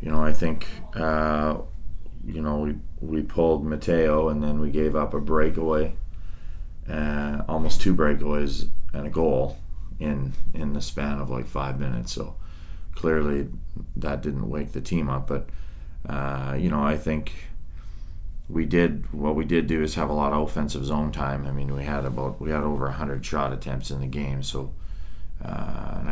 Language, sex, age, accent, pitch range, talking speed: English, male, 30-49, American, 70-80 Hz, 180 wpm